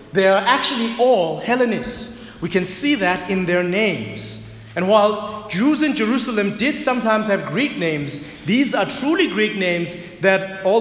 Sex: male